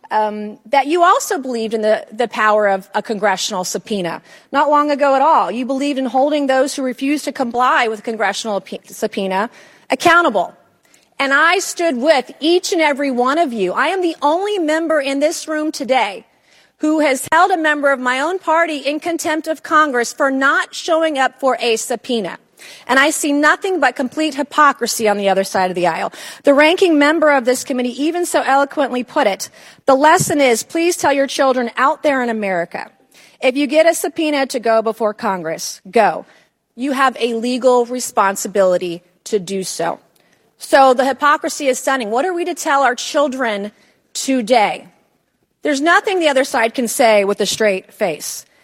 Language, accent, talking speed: English, American, 185 wpm